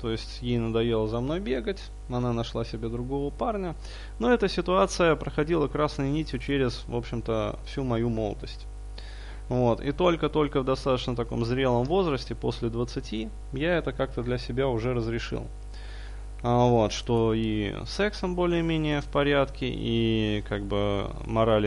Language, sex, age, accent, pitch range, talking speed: Russian, male, 20-39, native, 105-140 Hz, 140 wpm